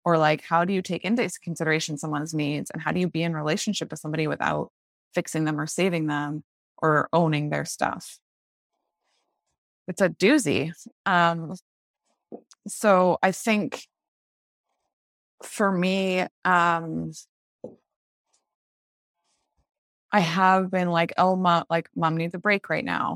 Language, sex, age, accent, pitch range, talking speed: English, female, 20-39, American, 155-185 Hz, 135 wpm